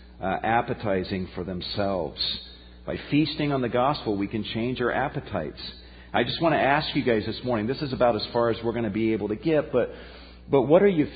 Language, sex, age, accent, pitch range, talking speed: English, male, 50-69, American, 100-145 Hz, 220 wpm